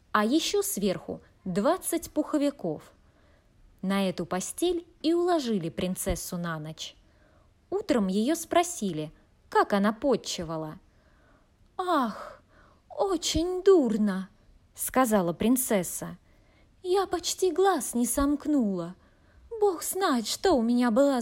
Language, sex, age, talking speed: Russian, female, 20-39, 100 wpm